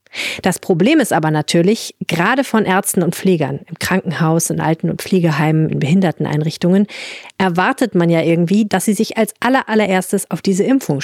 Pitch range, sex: 160-210 Hz, female